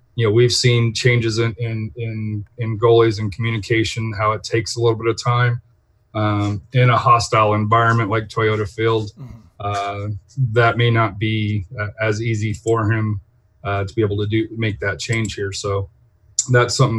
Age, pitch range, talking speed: 30-49, 110-130 Hz, 180 wpm